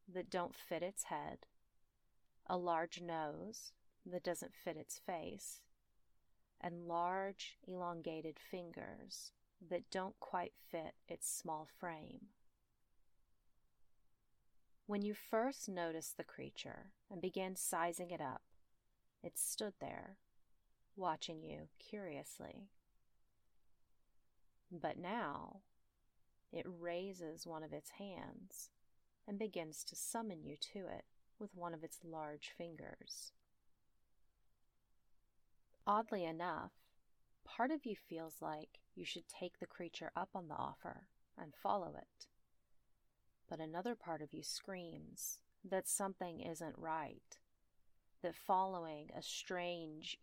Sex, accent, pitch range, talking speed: female, American, 160-190 Hz, 115 wpm